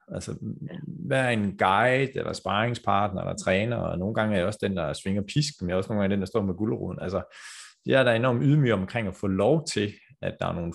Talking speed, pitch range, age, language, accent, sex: 245 wpm, 90-115 Hz, 30-49, Danish, native, male